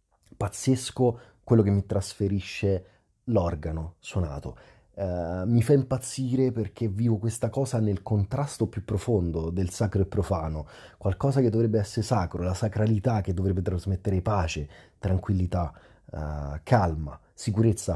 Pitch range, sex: 90-115 Hz, male